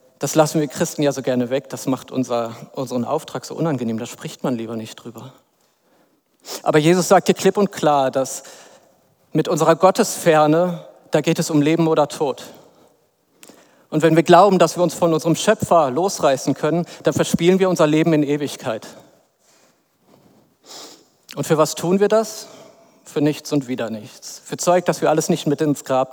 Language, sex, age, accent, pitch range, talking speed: German, male, 40-59, German, 140-170 Hz, 175 wpm